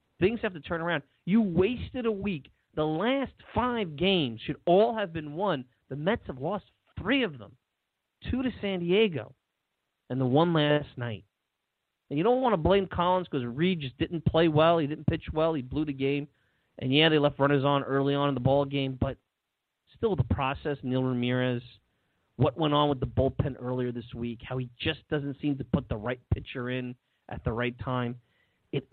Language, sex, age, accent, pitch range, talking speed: English, male, 30-49, American, 125-165 Hz, 205 wpm